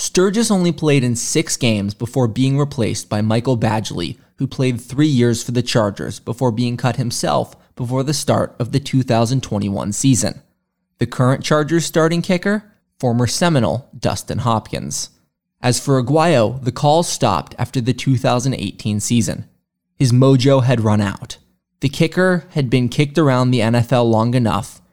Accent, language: American, English